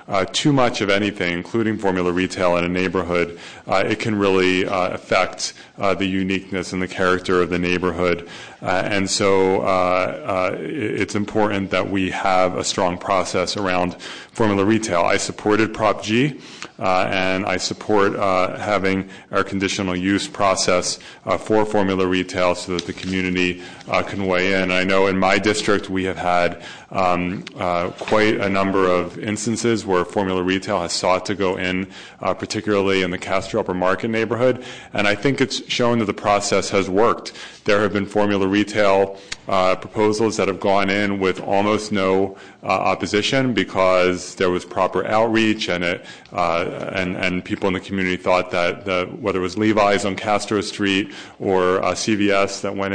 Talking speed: 175 wpm